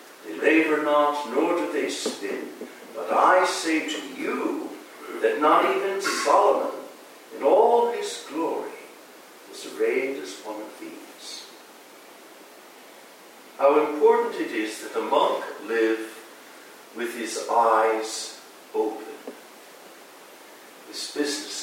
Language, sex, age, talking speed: English, male, 60-79, 110 wpm